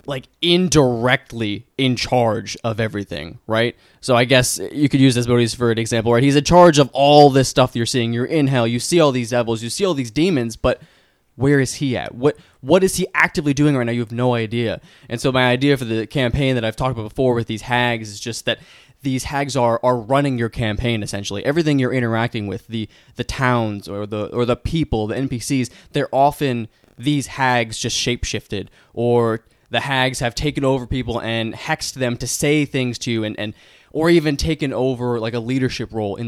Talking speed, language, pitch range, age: 215 wpm, English, 115-140 Hz, 20-39